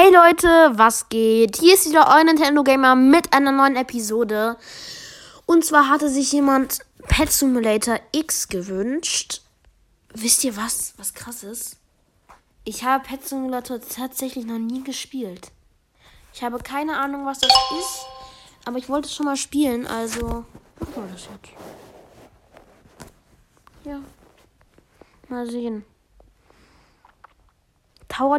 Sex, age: female, 20-39